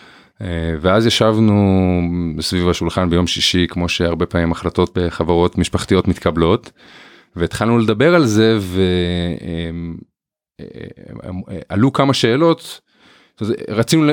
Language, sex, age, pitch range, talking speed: Hebrew, male, 30-49, 90-125 Hz, 90 wpm